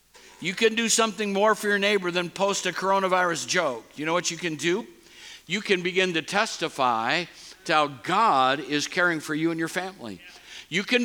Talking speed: 195 wpm